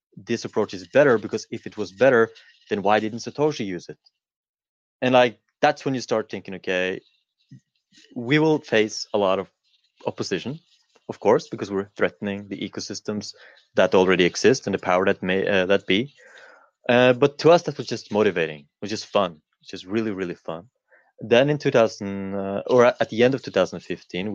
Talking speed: 180 wpm